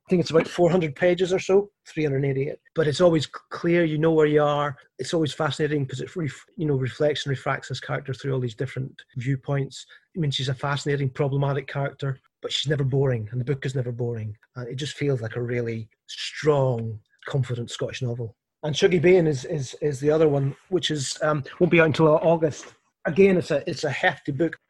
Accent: British